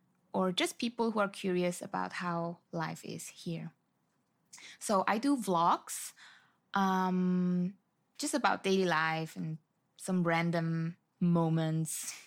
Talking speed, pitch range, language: 115 wpm, 175-205 Hz, English